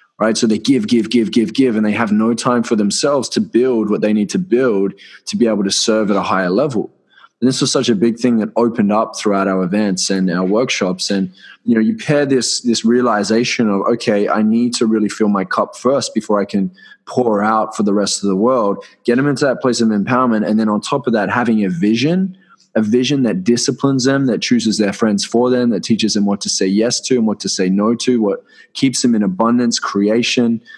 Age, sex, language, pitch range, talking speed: 20-39, male, English, 105-125 Hz, 240 wpm